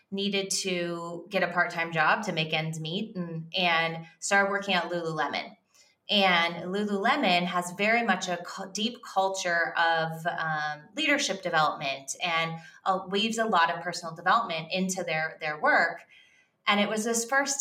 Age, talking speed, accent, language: 20-39, 155 wpm, American, English